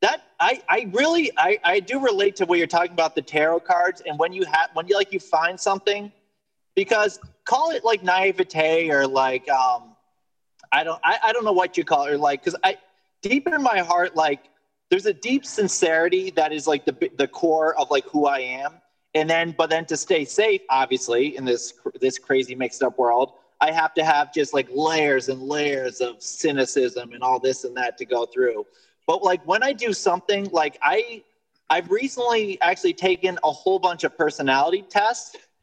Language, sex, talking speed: English, male, 200 wpm